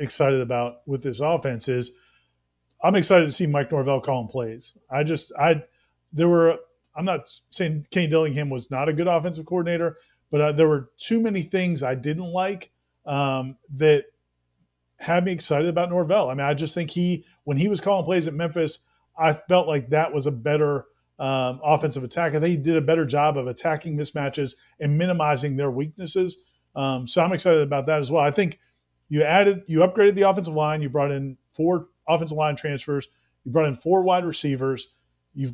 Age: 40-59